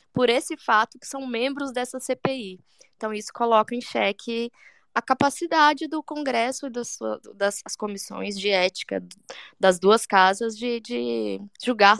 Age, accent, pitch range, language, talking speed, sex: 10-29, Brazilian, 185-240 Hz, Portuguese, 155 wpm, female